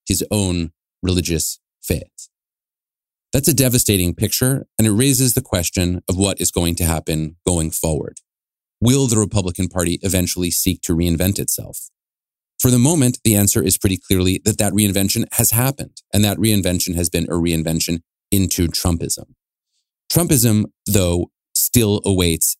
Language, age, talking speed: English, 30-49, 150 wpm